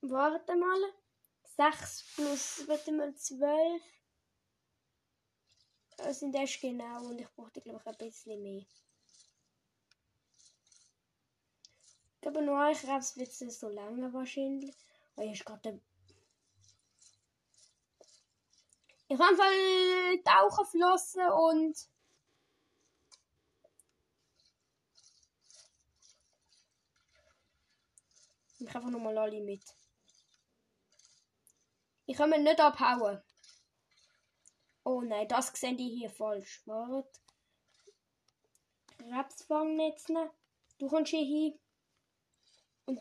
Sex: female